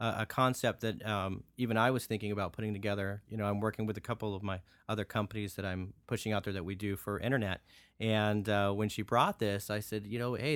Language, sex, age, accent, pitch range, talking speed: English, male, 40-59, American, 100-110 Hz, 245 wpm